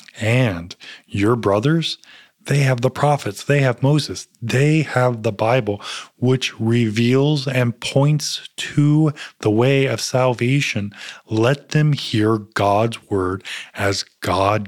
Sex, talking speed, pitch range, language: male, 125 wpm, 110-145 Hz, English